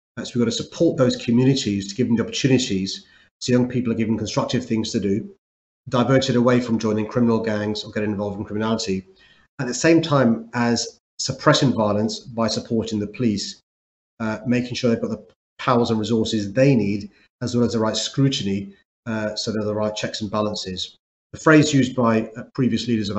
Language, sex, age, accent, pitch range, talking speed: English, male, 40-59, British, 105-125 Hz, 195 wpm